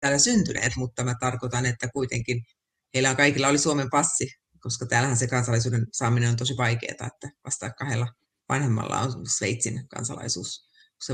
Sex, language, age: female, Finnish, 30-49